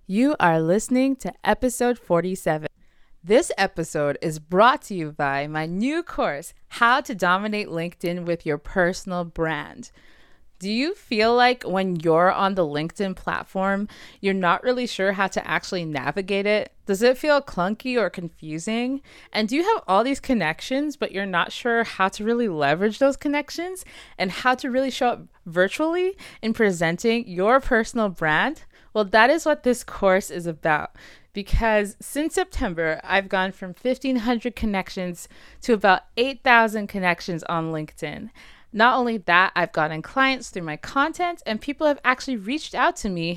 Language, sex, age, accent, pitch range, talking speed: English, female, 20-39, American, 175-250 Hz, 160 wpm